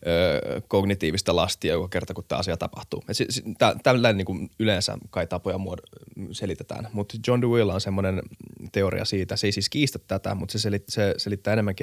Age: 20-39